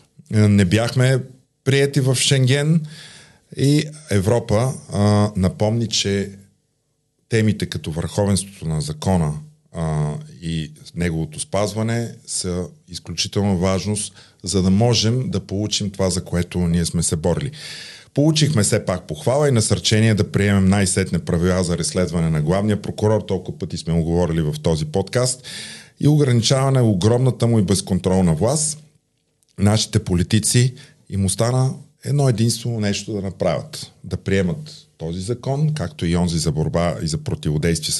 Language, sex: Bulgarian, male